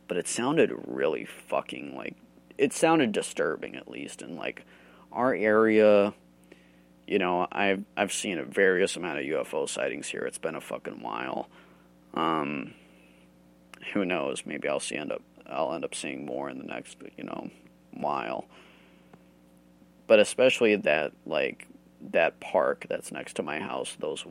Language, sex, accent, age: Japanese, male, American, 30-49